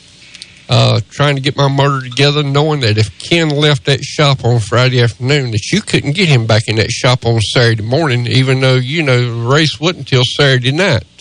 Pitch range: 125-160 Hz